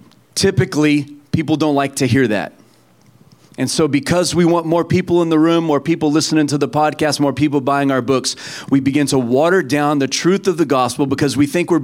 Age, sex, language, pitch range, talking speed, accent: 40-59, male, English, 150-185 Hz, 215 wpm, American